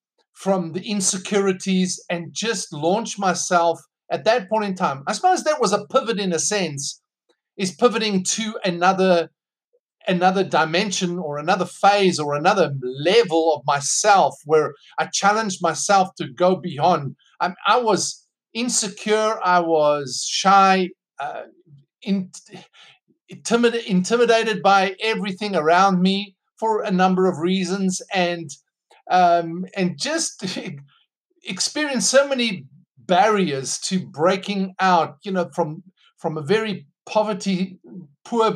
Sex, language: male, English